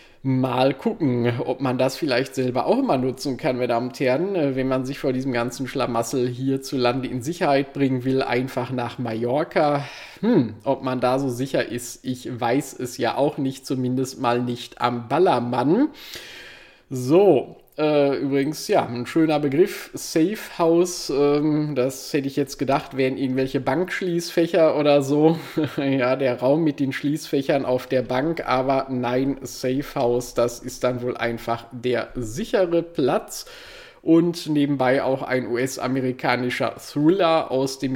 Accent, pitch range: German, 125-145 Hz